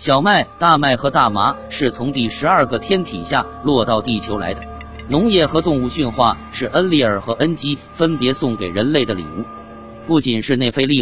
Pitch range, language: 115-145 Hz, Chinese